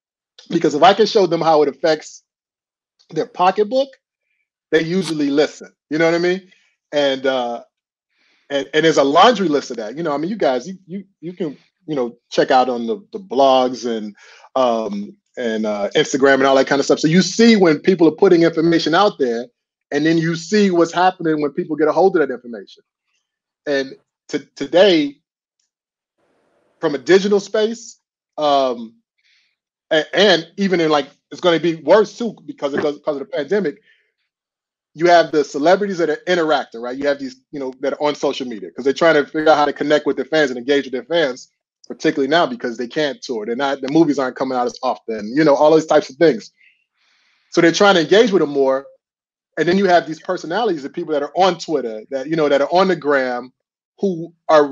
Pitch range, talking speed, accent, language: 140-185 Hz, 210 wpm, American, English